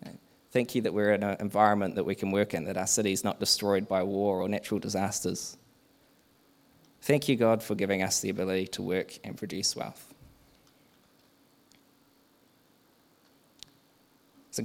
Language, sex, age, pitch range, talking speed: English, male, 20-39, 95-110 Hz, 150 wpm